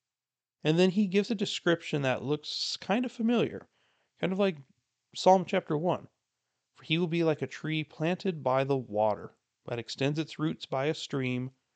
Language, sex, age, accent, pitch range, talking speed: English, male, 30-49, American, 115-150 Hz, 180 wpm